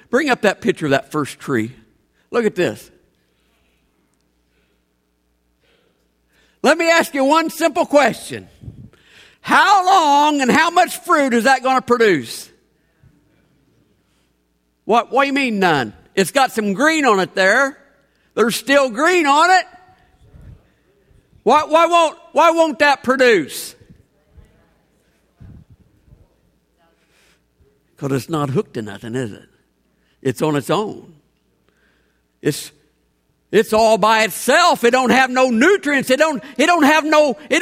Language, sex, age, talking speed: English, male, 50-69, 130 wpm